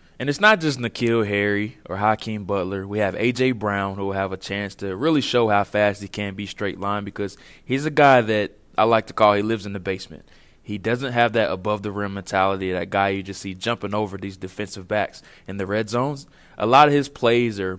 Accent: American